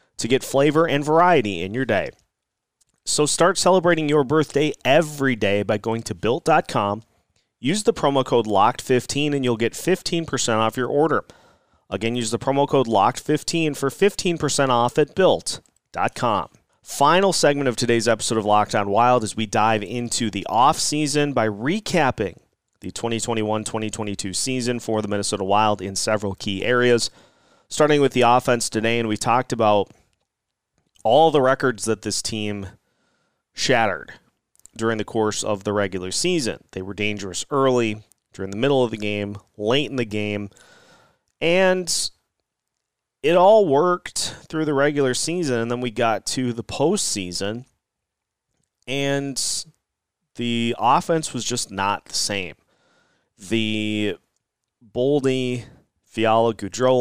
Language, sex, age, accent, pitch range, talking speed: English, male, 30-49, American, 110-140 Hz, 140 wpm